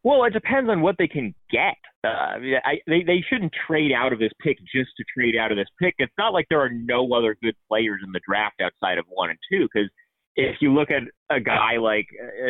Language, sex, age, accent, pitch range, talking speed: English, male, 30-49, American, 105-140 Hz, 245 wpm